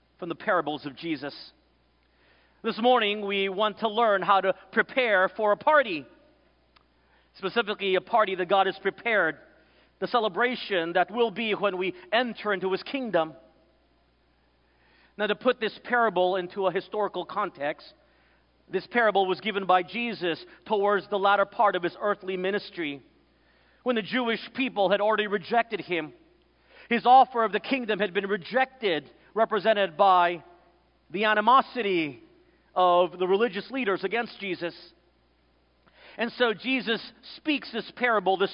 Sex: male